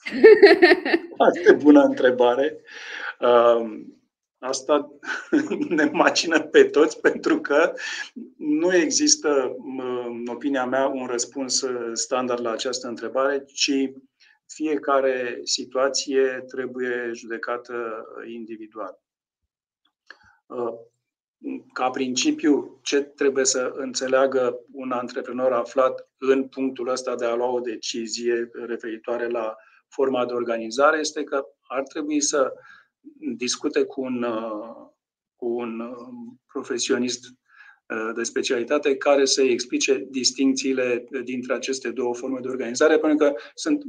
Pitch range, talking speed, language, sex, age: 120-150 Hz, 105 wpm, Romanian, male, 50-69